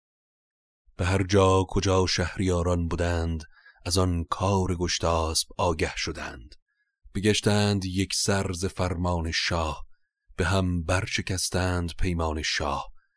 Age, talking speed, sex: 30-49, 100 wpm, male